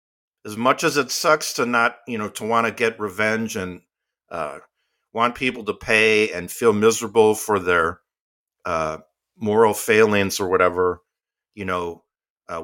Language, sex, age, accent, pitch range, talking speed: English, male, 50-69, American, 95-120 Hz, 155 wpm